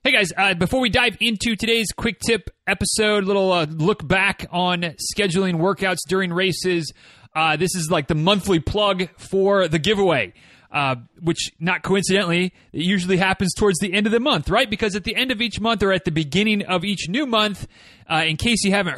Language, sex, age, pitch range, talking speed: English, male, 30-49, 160-200 Hz, 205 wpm